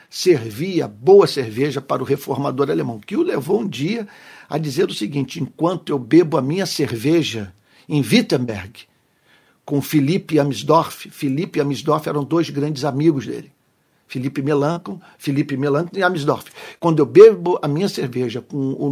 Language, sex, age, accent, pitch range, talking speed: Portuguese, male, 50-69, Brazilian, 140-170 Hz, 150 wpm